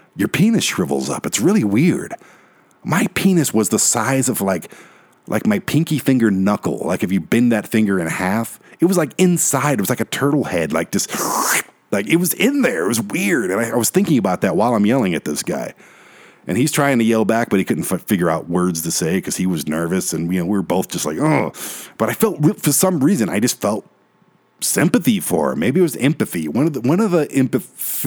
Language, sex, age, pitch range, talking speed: English, male, 50-69, 90-150 Hz, 245 wpm